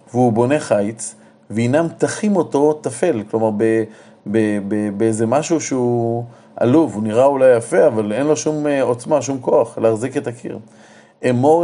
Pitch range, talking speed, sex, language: 115-145 Hz, 140 wpm, male, Hebrew